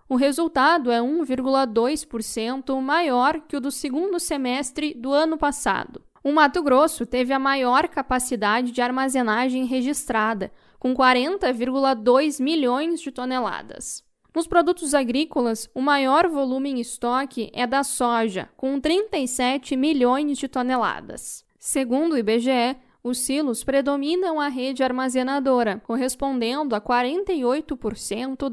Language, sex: Portuguese, female